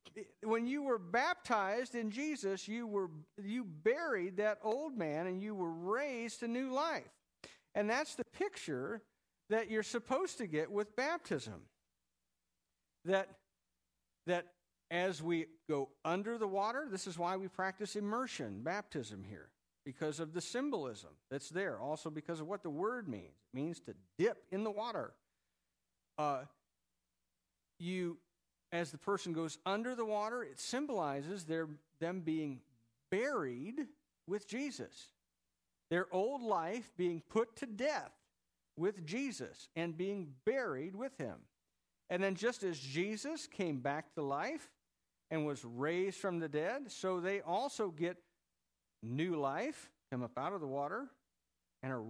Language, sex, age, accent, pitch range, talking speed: English, male, 50-69, American, 140-220 Hz, 145 wpm